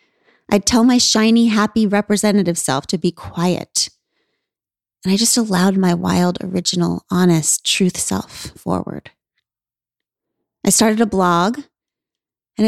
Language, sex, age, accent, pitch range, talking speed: English, female, 30-49, American, 170-225 Hz, 125 wpm